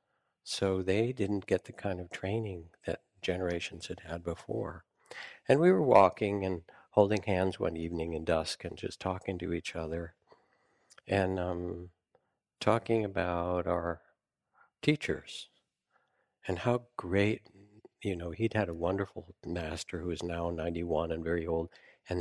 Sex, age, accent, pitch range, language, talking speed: male, 60-79, American, 85-105 Hz, English, 145 wpm